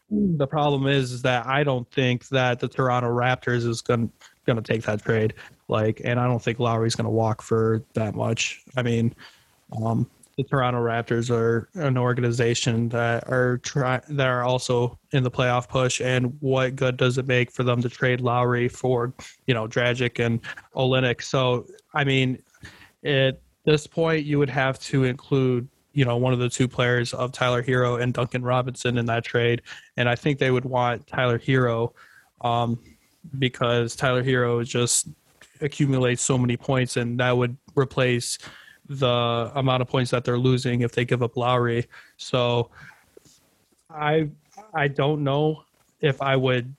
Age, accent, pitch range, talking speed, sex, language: 20-39, American, 120-135 Hz, 170 wpm, male, English